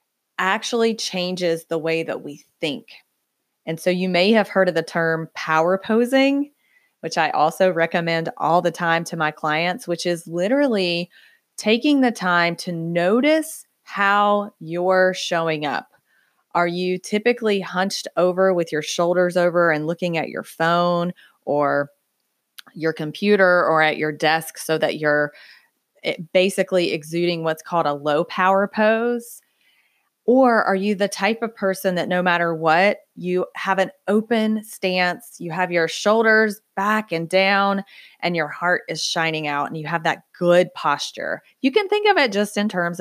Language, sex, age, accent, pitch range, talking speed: English, female, 30-49, American, 165-205 Hz, 160 wpm